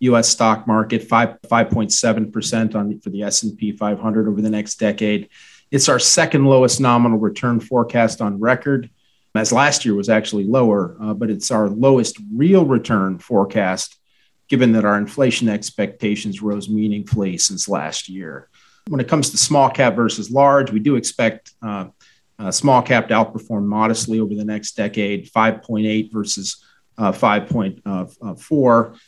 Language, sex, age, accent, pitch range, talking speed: English, male, 40-59, American, 105-120 Hz, 145 wpm